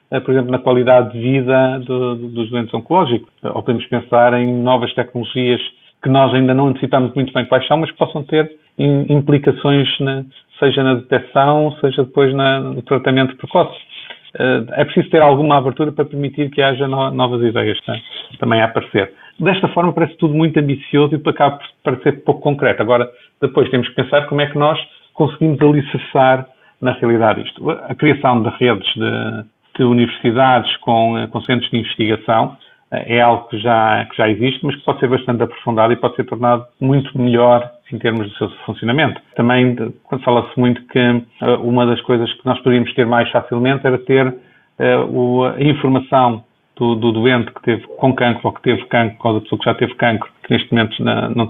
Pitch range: 120-140 Hz